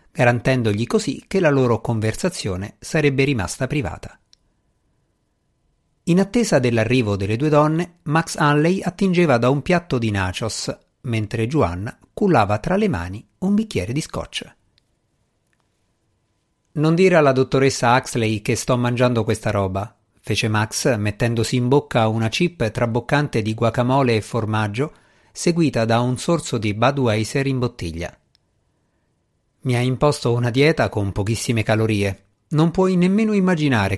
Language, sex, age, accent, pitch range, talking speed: Italian, male, 50-69, native, 110-150 Hz, 130 wpm